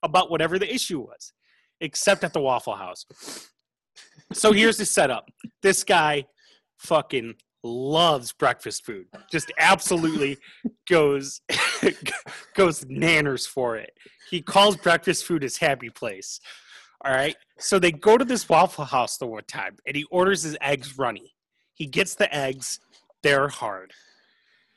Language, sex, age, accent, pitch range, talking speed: English, male, 30-49, American, 155-205 Hz, 140 wpm